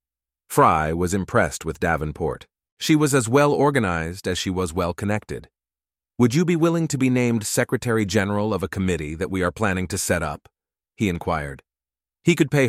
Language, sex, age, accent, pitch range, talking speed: English, male, 40-59, American, 85-115 Hz, 170 wpm